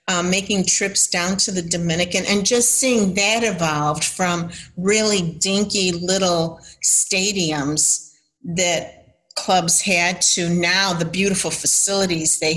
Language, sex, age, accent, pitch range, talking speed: English, female, 50-69, American, 170-200 Hz, 125 wpm